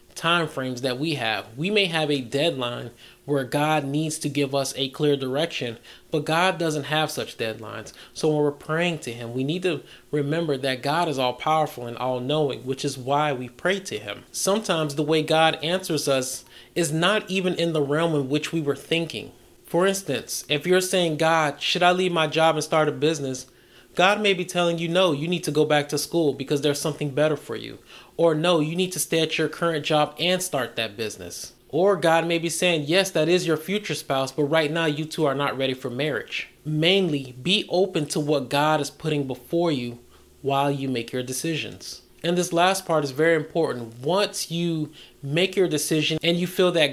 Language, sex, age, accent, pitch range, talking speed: English, male, 30-49, American, 135-165 Hz, 210 wpm